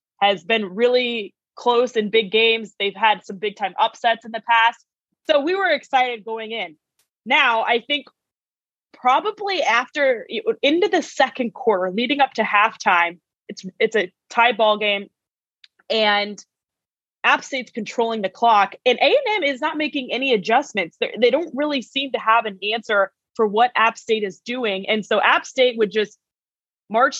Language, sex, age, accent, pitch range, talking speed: English, female, 20-39, American, 215-275 Hz, 170 wpm